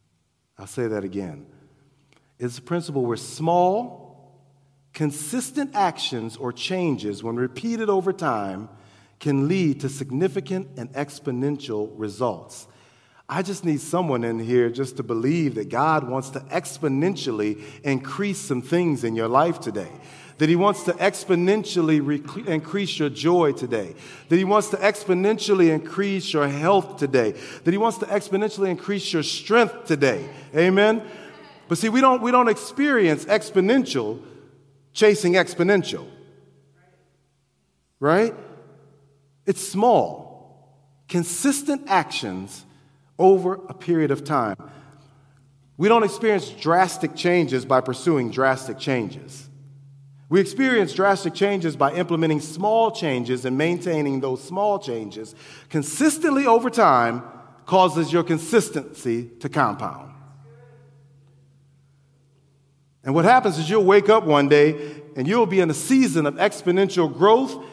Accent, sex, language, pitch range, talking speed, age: American, male, English, 135-190 Hz, 125 wpm, 40-59